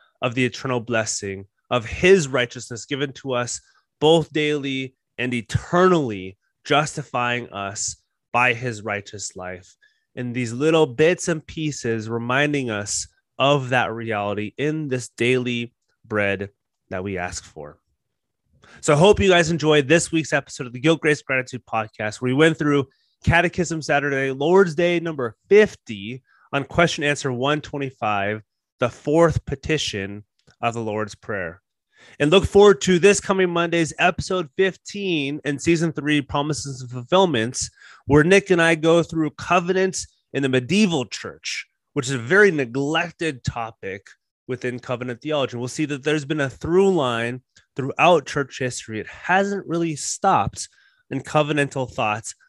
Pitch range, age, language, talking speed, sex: 120-165 Hz, 30-49, English, 145 wpm, male